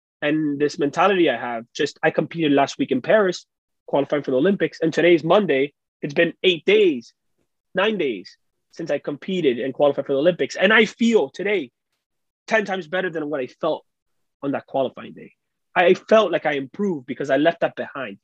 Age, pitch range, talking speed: 20-39, 125-170 Hz, 190 wpm